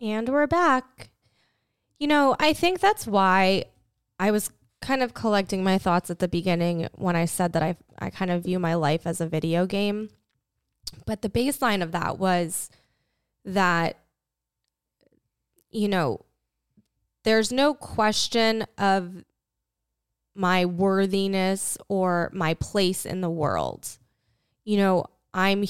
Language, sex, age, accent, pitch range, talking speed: English, female, 20-39, American, 170-215 Hz, 135 wpm